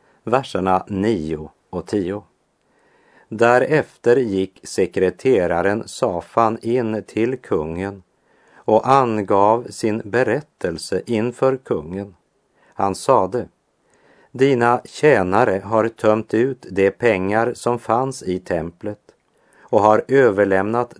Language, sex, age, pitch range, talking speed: Swedish, male, 50-69, 90-115 Hz, 95 wpm